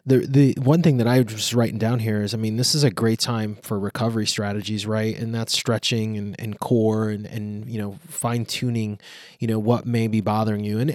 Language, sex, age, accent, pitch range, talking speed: English, male, 20-39, American, 110-125 Hz, 230 wpm